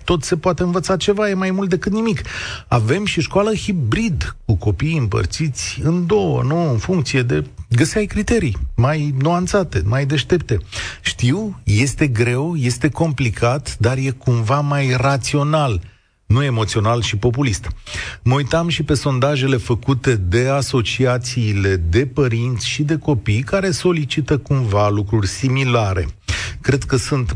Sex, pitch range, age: male, 115-170 Hz, 40-59